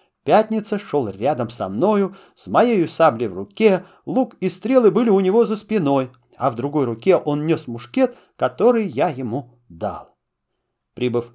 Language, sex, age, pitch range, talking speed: Russian, male, 40-59, 145-210 Hz, 160 wpm